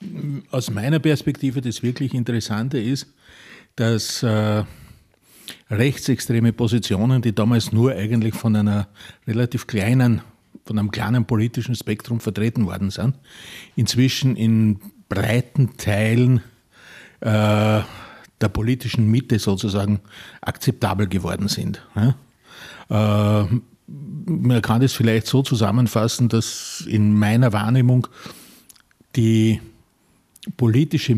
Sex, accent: male, Austrian